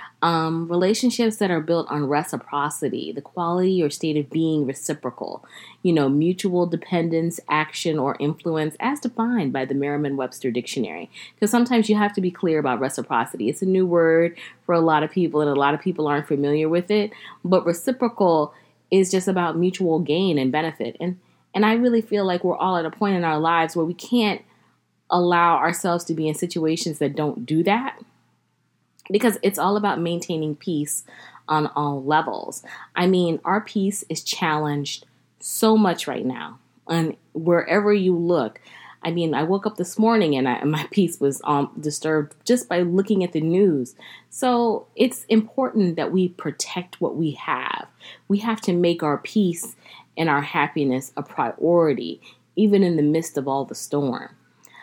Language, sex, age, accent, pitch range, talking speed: English, female, 20-39, American, 150-190 Hz, 175 wpm